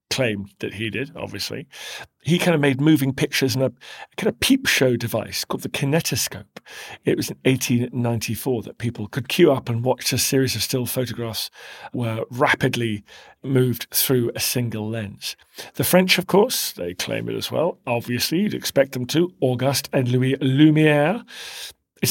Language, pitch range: English, 120-155 Hz